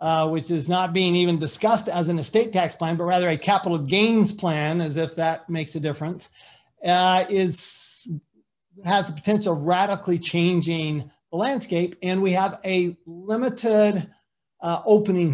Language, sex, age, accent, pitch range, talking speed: English, male, 40-59, American, 155-185 Hz, 160 wpm